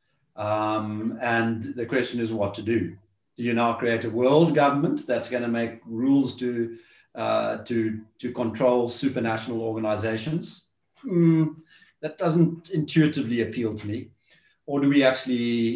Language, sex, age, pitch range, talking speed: English, male, 40-59, 110-130 Hz, 140 wpm